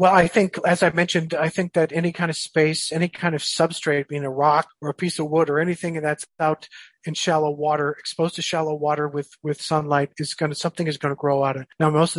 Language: English